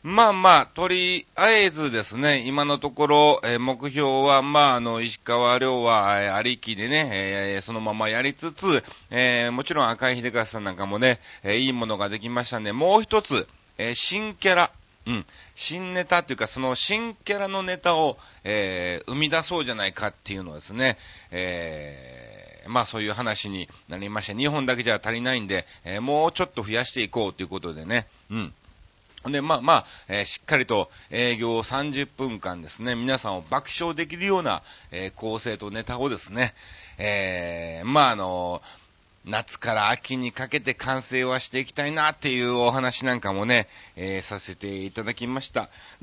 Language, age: Japanese, 40-59